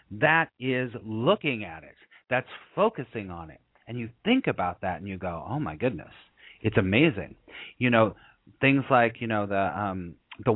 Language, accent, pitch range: English, American, 105-140 Hz